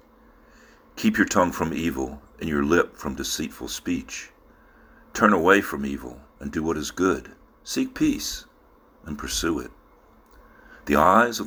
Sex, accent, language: male, American, English